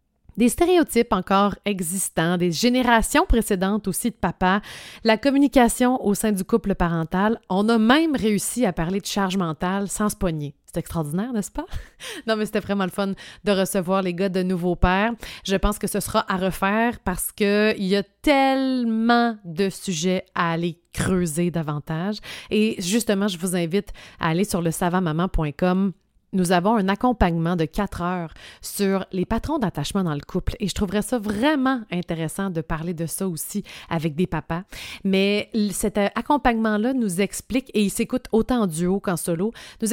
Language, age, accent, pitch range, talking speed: French, 30-49, Canadian, 180-220 Hz, 175 wpm